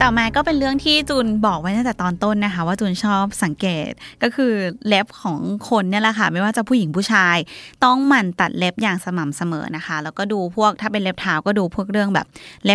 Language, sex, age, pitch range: Thai, female, 20-39, 180-220 Hz